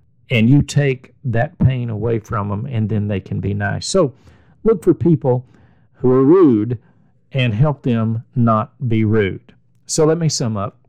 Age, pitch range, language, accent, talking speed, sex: 50-69, 110-145 Hz, English, American, 175 wpm, male